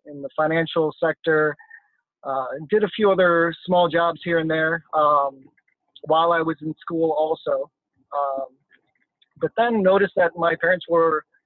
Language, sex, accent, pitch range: English, male, American, 145-170 Hz